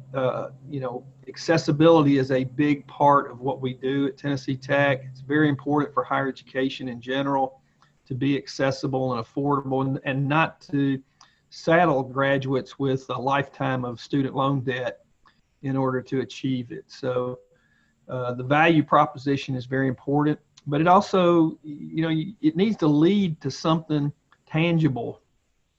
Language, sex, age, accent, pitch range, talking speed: English, male, 40-59, American, 130-150 Hz, 155 wpm